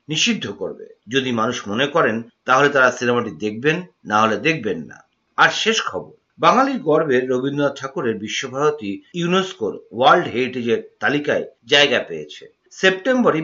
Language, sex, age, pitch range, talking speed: Bengali, male, 50-69, 130-180 Hz, 65 wpm